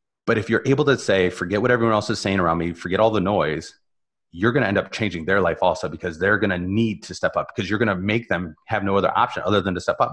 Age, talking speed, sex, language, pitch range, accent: 30-49, 280 wpm, male, English, 95-120 Hz, American